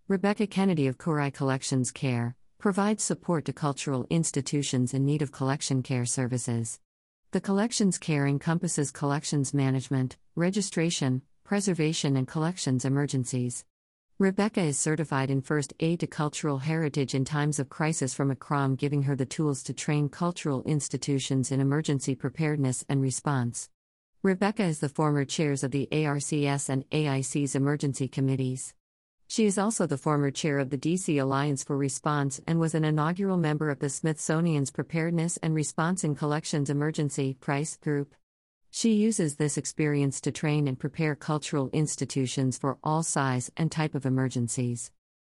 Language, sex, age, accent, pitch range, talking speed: English, female, 50-69, American, 135-160 Hz, 150 wpm